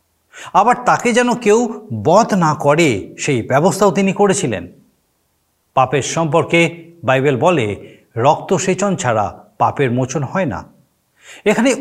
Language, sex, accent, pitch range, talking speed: Bengali, male, native, 140-205 Hz, 110 wpm